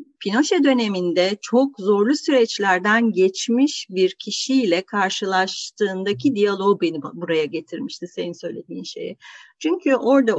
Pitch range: 185-270 Hz